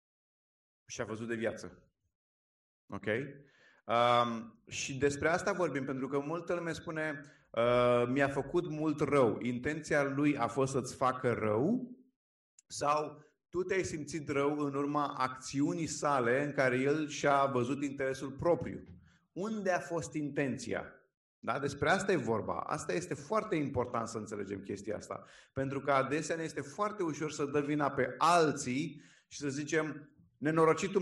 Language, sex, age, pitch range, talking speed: Romanian, male, 30-49, 130-170 Hz, 145 wpm